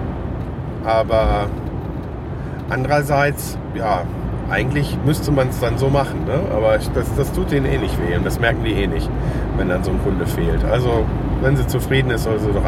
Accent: German